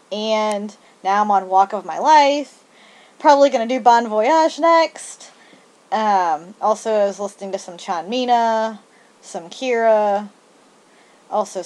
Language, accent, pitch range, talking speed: English, American, 185-230 Hz, 135 wpm